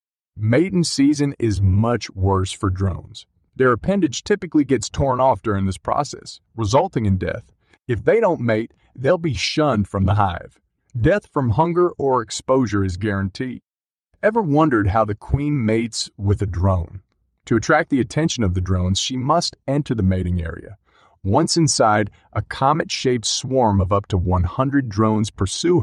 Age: 40-59